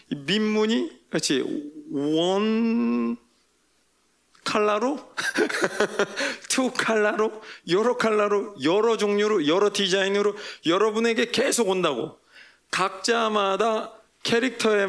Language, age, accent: Korean, 40-59, native